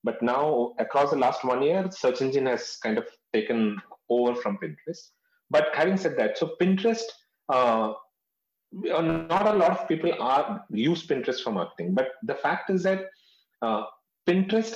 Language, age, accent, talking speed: English, 30-49, Indian, 165 wpm